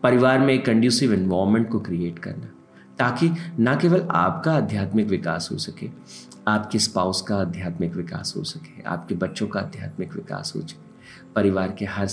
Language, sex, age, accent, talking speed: Hindi, male, 50-69, native, 165 wpm